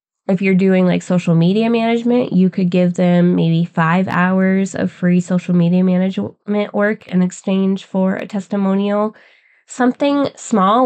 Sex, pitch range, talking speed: female, 175-205 Hz, 150 wpm